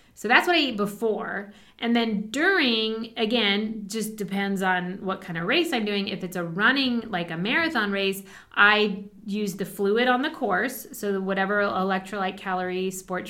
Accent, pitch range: American, 180-215 Hz